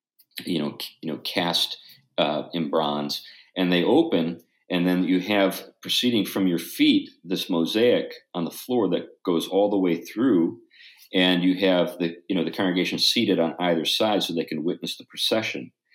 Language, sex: English, male